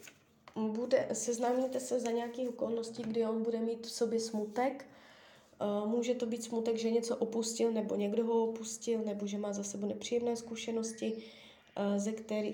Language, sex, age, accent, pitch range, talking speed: Czech, female, 20-39, native, 205-240 Hz, 155 wpm